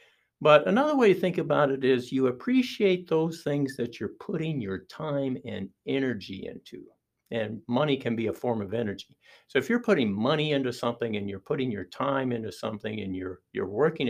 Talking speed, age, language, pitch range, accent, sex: 195 wpm, 60-79, English, 115-180 Hz, American, male